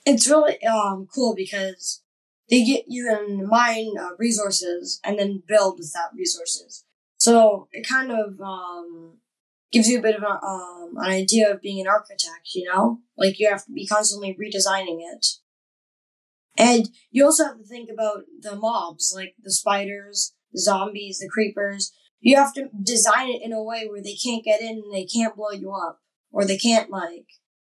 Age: 10-29